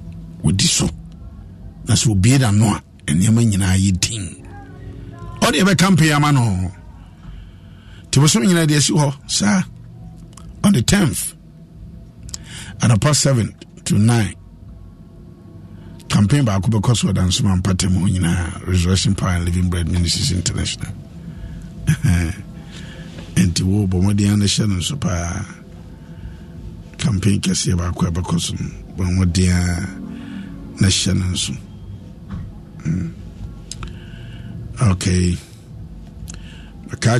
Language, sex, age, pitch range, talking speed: English, male, 50-69, 90-115 Hz, 105 wpm